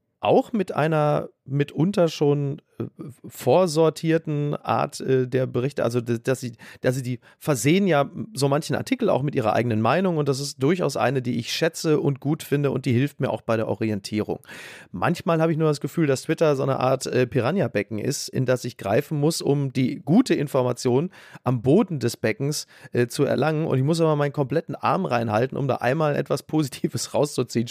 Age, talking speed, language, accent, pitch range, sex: 30-49, 185 wpm, German, German, 125-160 Hz, male